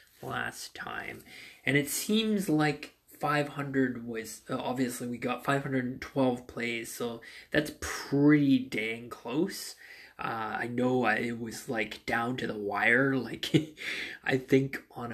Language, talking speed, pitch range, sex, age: English, 135 wpm, 120-145 Hz, male, 20-39